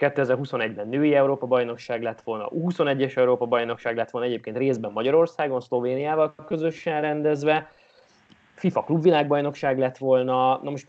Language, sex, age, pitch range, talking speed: Hungarian, male, 20-39, 125-155 Hz, 125 wpm